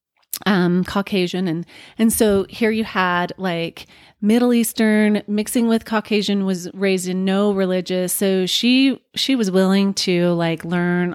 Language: English